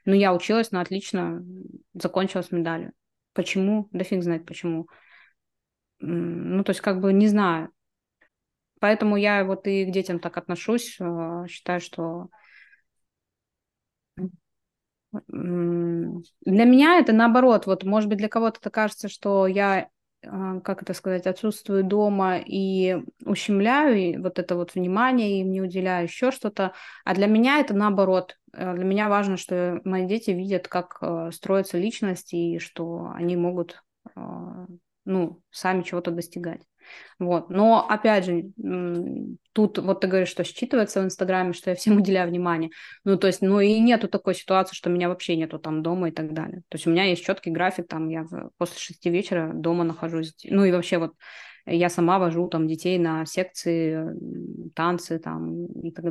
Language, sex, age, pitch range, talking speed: Russian, female, 20-39, 170-200 Hz, 155 wpm